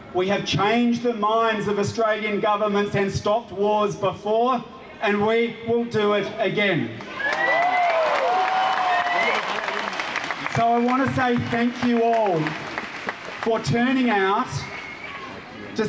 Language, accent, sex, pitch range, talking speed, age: English, Australian, male, 200-235 Hz, 115 wpm, 30-49